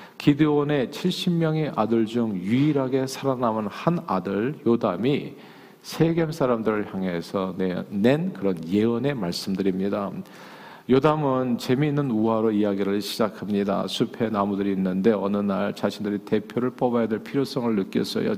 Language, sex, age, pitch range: Korean, male, 40-59, 105-135 Hz